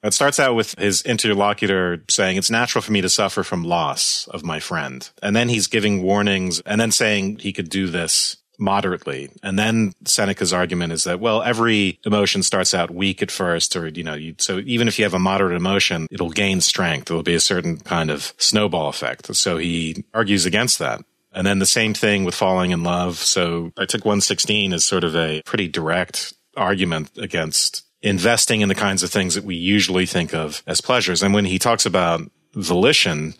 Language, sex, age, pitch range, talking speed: English, male, 40-59, 85-105 Hz, 205 wpm